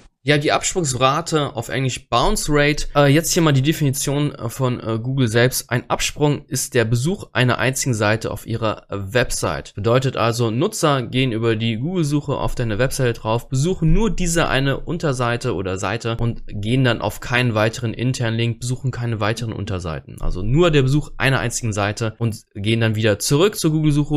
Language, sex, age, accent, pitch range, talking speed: German, male, 20-39, German, 115-150 Hz, 180 wpm